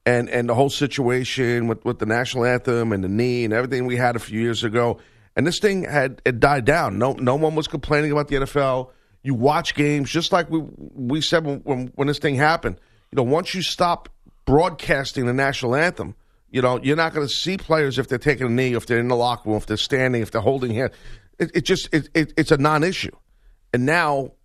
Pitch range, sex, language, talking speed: 120-155 Hz, male, English, 235 wpm